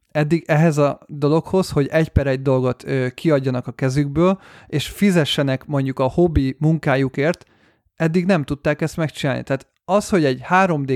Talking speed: 160 wpm